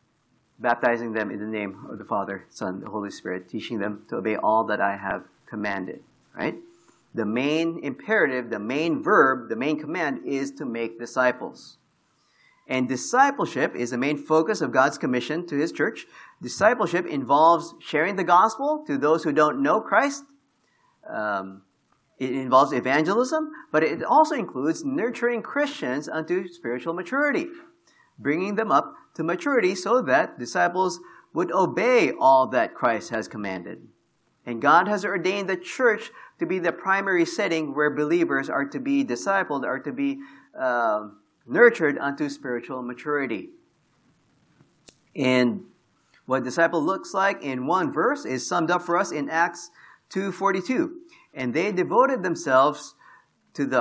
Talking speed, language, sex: 150 wpm, English, male